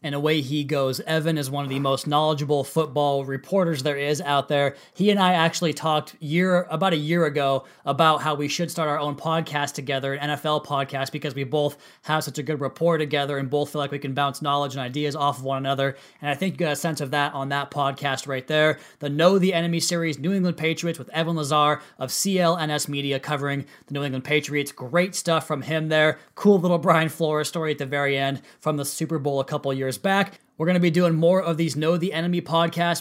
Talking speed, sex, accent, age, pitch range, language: 235 wpm, male, American, 20-39, 145-180 Hz, English